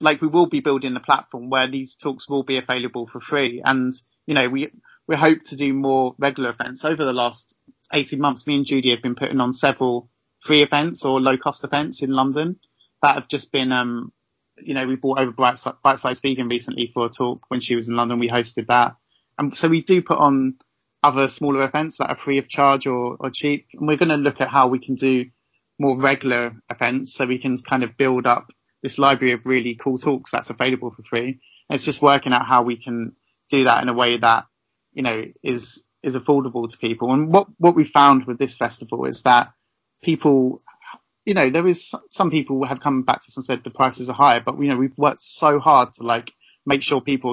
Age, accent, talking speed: 30-49, British, 225 wpm